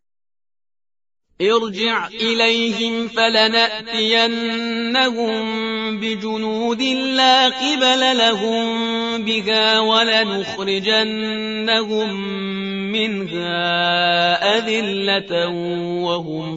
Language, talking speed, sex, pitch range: Persian, 45 wpm, male, 215-230 Hz